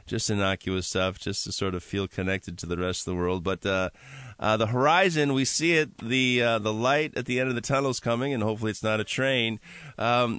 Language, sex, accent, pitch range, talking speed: English, male, American, 95-130 Hz, 245 wpm